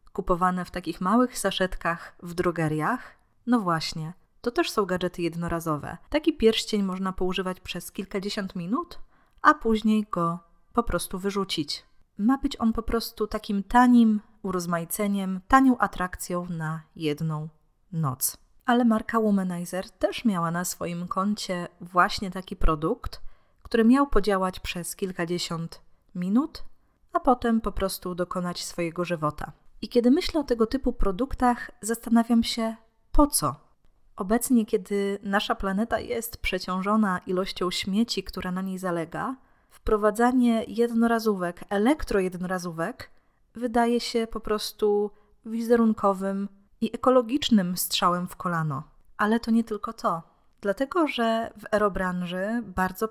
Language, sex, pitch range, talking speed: Polish, female, 180-230 Hz, 125 wpm